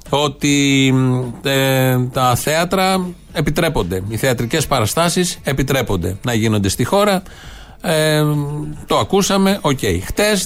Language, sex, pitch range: Greek, male, 120-180 Hz